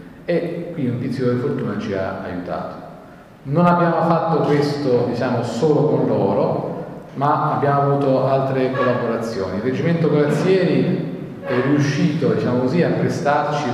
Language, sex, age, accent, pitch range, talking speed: Italian, male, 40-59, native, 120-150 Hz, 135 wpm